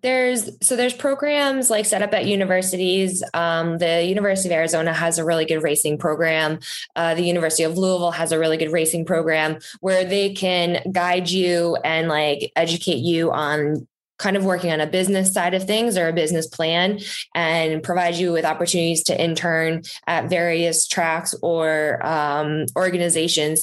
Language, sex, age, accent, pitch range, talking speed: English, female, 10-29, American, 160-185 Hz, 170 wpm